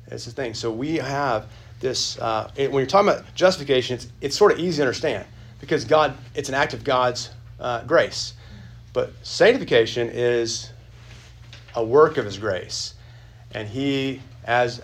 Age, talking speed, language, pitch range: 40-59, 160 wpm, English, 115-135 Hz